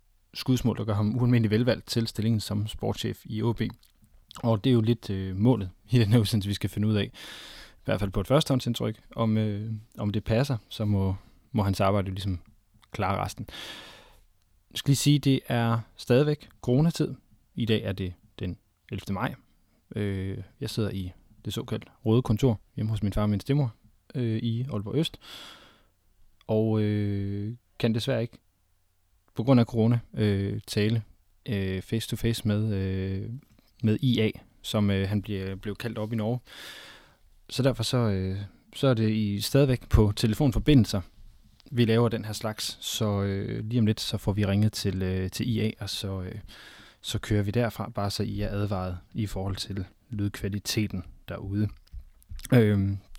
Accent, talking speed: native, 175 wpm